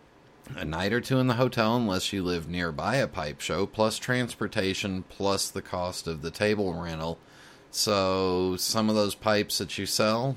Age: 30-49